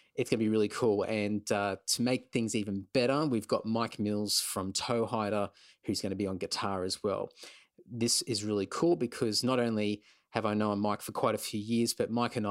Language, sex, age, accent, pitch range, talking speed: English, male, 20-39, Australian, 105-120 Hz, 225 wpm